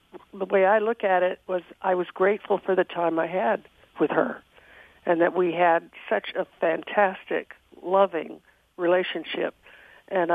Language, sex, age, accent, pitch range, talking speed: English, female, 60-79, American, 175-210 Hz, 155 wpm